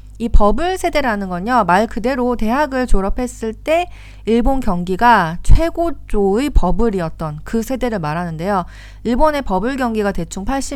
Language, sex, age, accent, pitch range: Korean, female, 40-59, native, 180-265 Hz